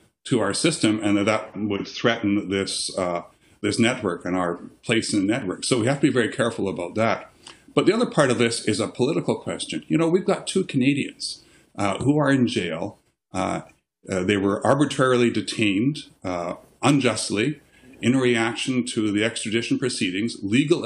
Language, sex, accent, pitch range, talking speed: English, male, American, 105-130 Hz, 180 wpm